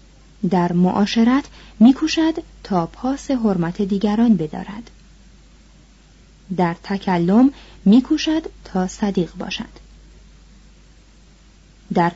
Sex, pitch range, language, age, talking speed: female, 180-240 Hz, Persian, 30-49, 75 wpm